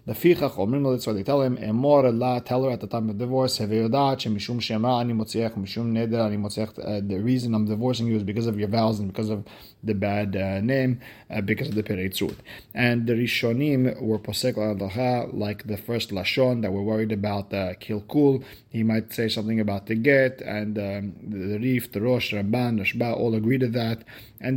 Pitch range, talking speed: 110-125 Hz, 170 wpm